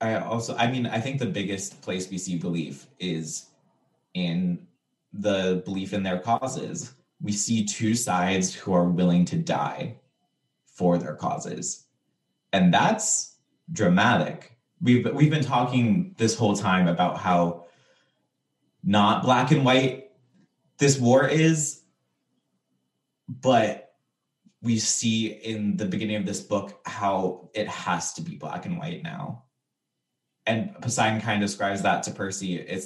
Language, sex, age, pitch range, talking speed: English, male, 20-39, 90-135 Hz, 140 wpm